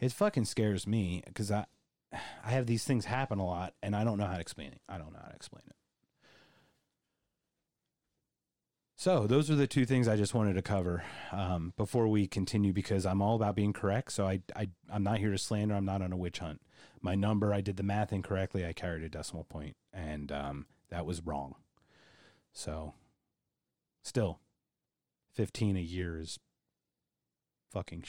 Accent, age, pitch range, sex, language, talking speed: American, 30-49, 95-140 Hz, male, English, 190 wpm